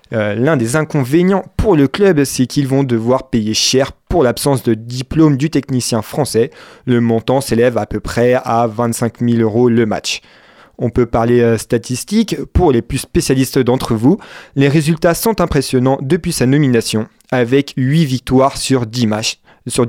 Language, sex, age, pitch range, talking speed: French, male, 30-49, 120-145 Hz, 165 wpm